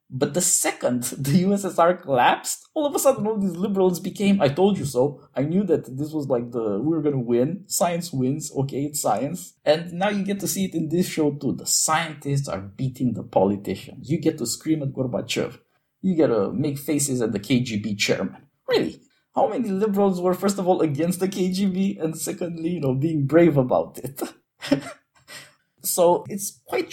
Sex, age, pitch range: male, 20-39, 140-185 Hz